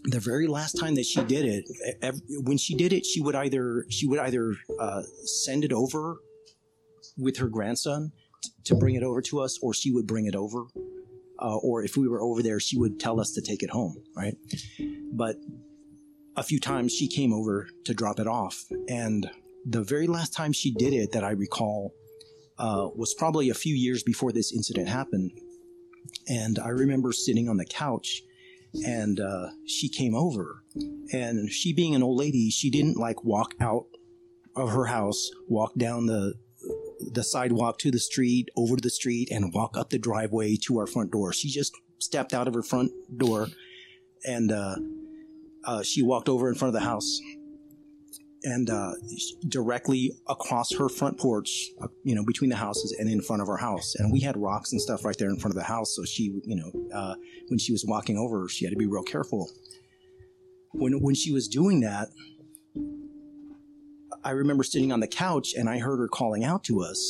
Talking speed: 195 wpm